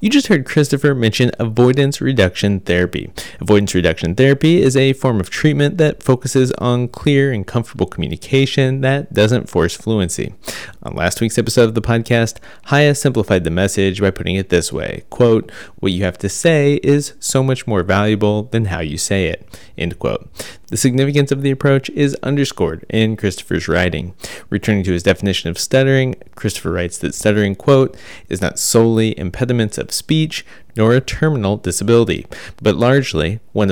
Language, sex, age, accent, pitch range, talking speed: English, male, 30-49, American, 95-130 Hz, 170 wpm